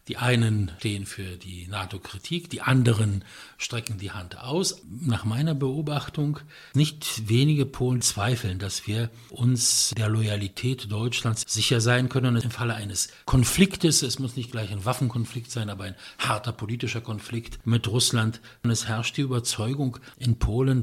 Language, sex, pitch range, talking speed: English, male, 105-130 Hz, 155 wpm